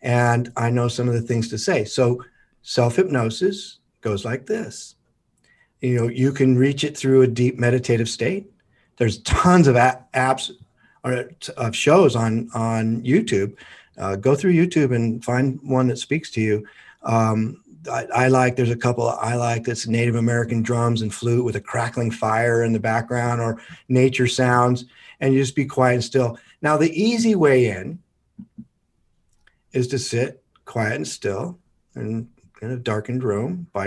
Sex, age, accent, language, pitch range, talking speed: male, 50-69, American, English, 115-130 Hz, 170 wpm